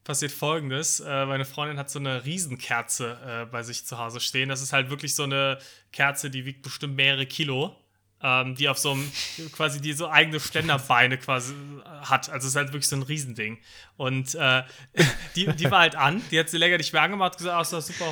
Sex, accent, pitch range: male, German, 135-170 Hz